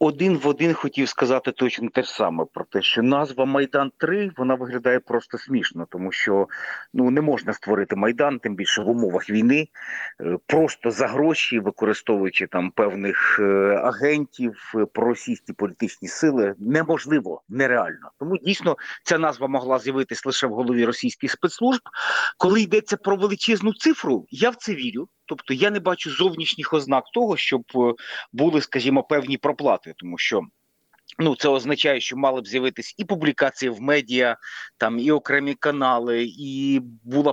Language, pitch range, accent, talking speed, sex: Ukrainian, 125-185 Hz, native, 150 wpm, male